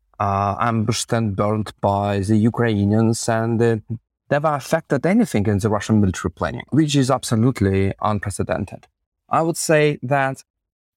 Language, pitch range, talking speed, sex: English, 110-135 Hz, 135 wpm, male